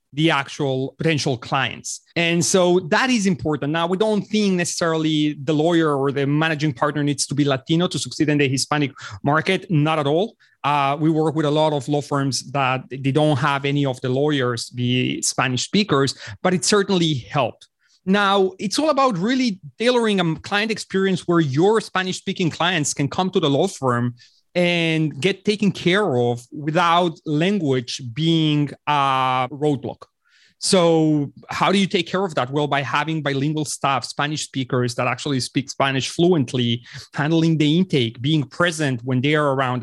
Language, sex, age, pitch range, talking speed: English, male, 30-49, 135-170 Hz, 175 wpm